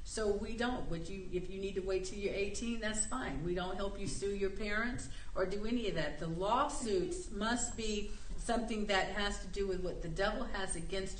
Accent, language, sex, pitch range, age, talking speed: American, English, female, 170-210 Hz, 50-69, 225 wpm